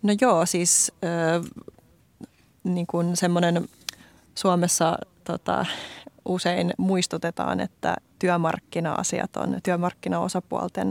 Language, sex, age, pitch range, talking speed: Finnish, female, 20-39, 170-195 Hz, 75 wpm